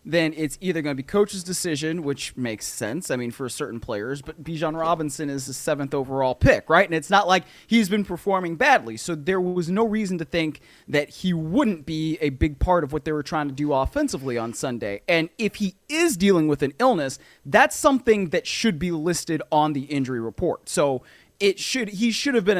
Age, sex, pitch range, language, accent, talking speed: 30-49, male, 150-200 Hz, English, American, 220 wpm